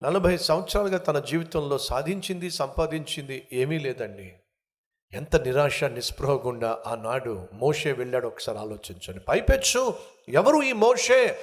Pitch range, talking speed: 115-190 Hz, 110 wpm